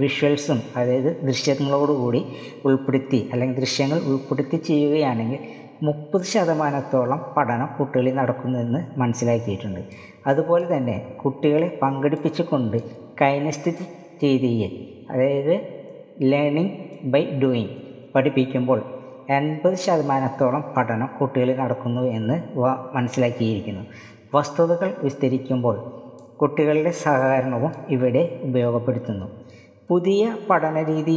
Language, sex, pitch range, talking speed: Malayalam, female, 125-150 Hz, 80 wpm